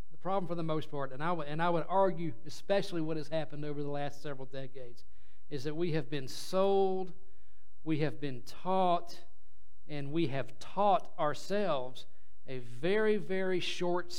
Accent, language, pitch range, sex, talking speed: American, English, 145-175 Hz, male, 160 wpm